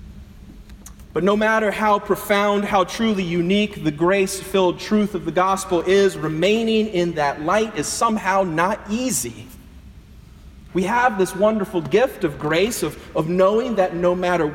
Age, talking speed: 30-49, 150 wpm